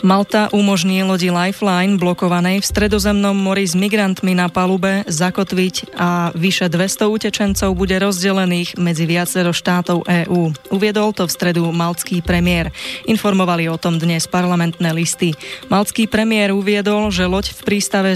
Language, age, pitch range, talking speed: Slovak, 20-39, 175-200 Hz, 140 wpm